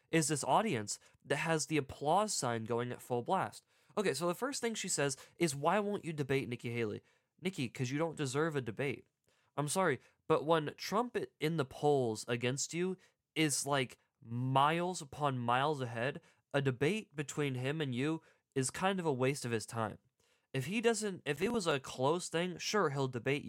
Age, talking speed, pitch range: 20-39, 190 wpm, 130-175 Hz